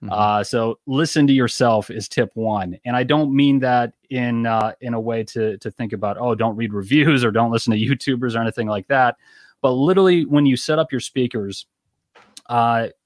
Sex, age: male, 30-49